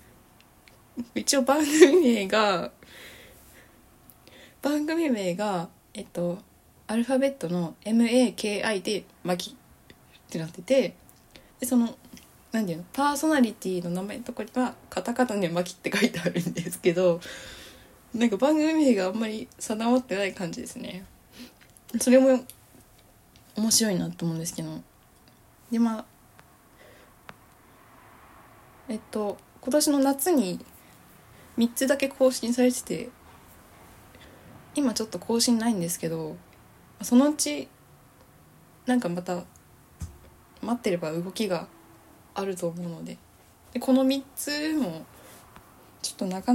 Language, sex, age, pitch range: Japanese, female, 20-39, 175-255 Hz